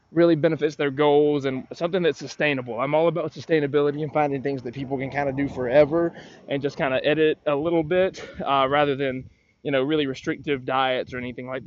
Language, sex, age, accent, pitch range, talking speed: English, male, 20-39, American, 130-155 Hz, 210 wpm